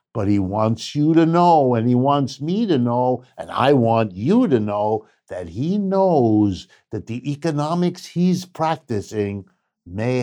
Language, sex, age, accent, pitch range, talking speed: English, male, 60-79, American, 110-140 Hz, 160 wpm